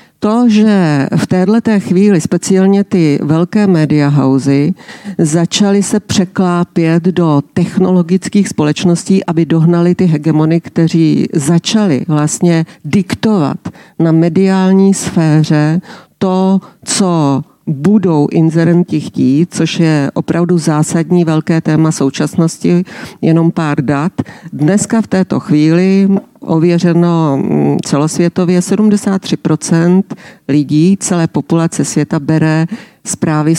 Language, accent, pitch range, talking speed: Czech, native, 160-195 Hz, 95 wpm